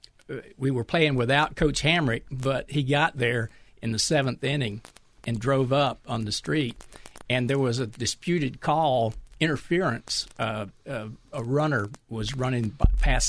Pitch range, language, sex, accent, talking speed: 115-150 Hz, English, male, American, 155 wpm